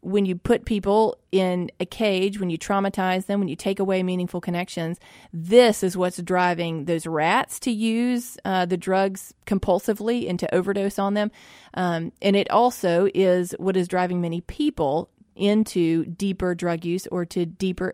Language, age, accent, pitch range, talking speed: English, 30-49, American, 180-210 Hz, 170 wpm